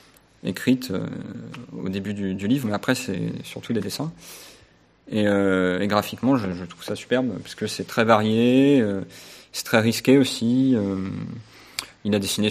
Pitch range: 100-120 Hz